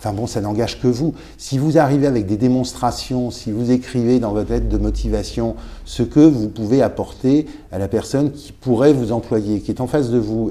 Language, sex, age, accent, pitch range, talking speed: French, male, 50-69, French, 100-125 Hz, 215 wpm